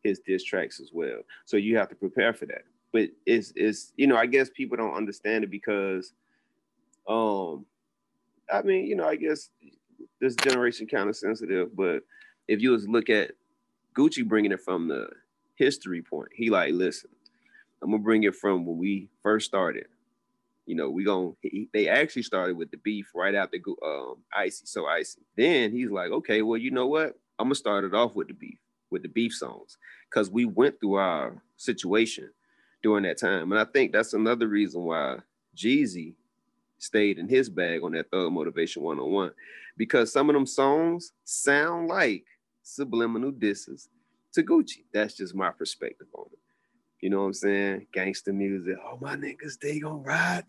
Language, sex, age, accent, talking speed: English, male, 30-49, American, 185 wpm